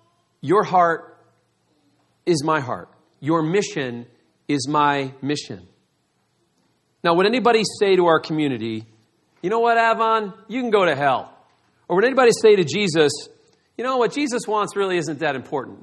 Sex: male